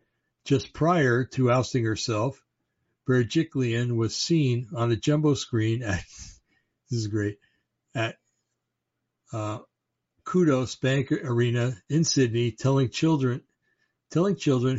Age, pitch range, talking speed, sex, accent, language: 60-79, 115-135 Hz, 110 wpm, male, American, English